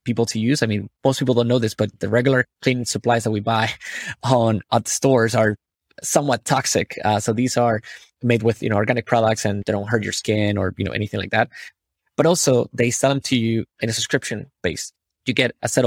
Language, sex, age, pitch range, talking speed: English, male, 20-39, 105-120 Hz, 225 wpm